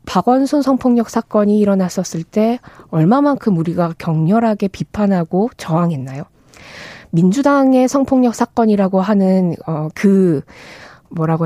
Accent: native